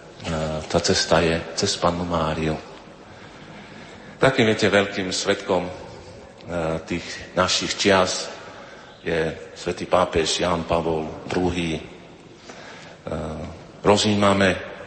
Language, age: Slovak, 50-69